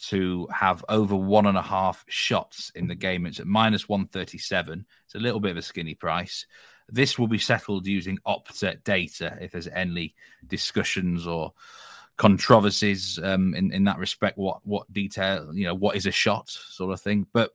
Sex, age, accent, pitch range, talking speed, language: male, 30-49, British, 90-110 Hz, 185 wpm, English